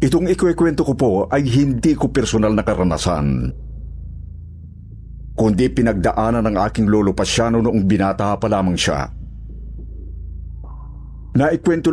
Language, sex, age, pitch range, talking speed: Filipino, male, 50-69, 70-110 Hz, 115 wpm